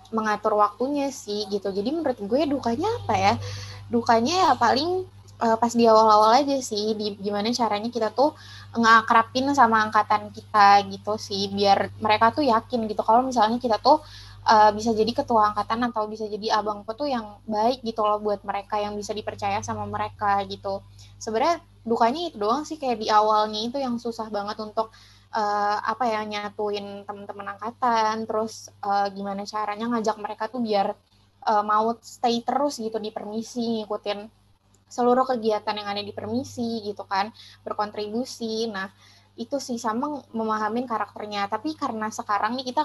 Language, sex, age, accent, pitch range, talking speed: Indonesian, female, 20-39, native, 205-235 Hz, 160 wpm